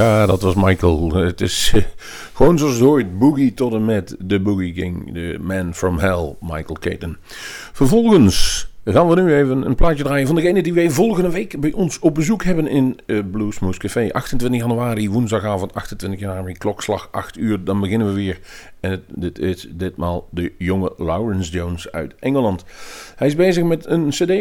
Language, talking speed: Dutch, 180 wpm